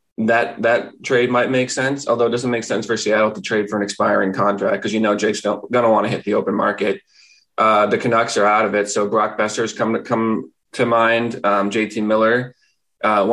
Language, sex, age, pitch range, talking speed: English, male, 20-39, 105-120 Hz, 230 wpm